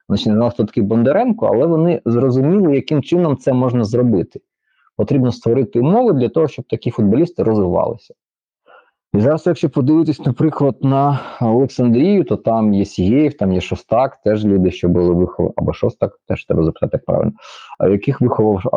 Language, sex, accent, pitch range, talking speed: Ukrainian, male, native, 95-135 Hz, 165 wpm